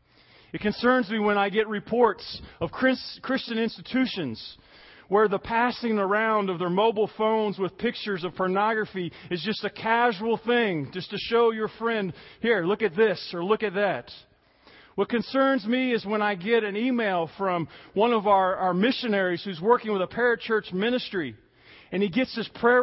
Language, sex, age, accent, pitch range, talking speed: English, male, 40-59, American, 185-235 Hz, 175 wpm